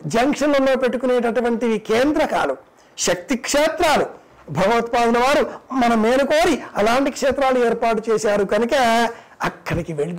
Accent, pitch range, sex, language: native, 205-250 Hz, male, Telugu